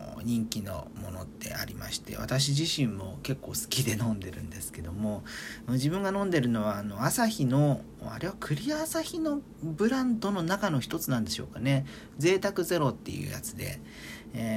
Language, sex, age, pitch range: Japanese, male, 40-59, 110-165 Hz